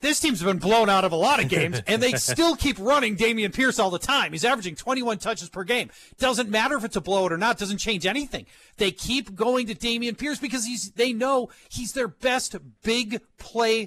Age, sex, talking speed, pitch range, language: 40-59, male, 230 wpm, 160-240 Hz, English